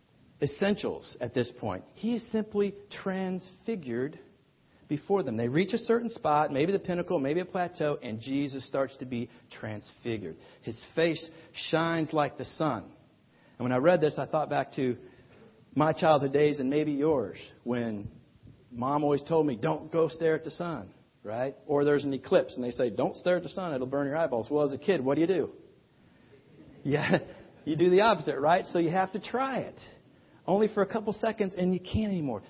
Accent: American